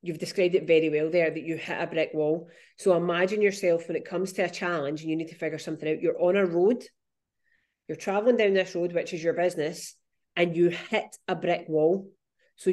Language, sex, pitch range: English, female, 165-195 Hz